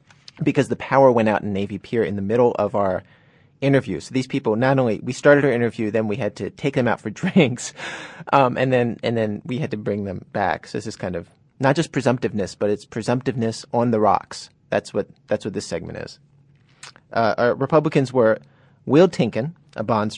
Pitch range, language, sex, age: 110-145 Hz, English, male, 30-49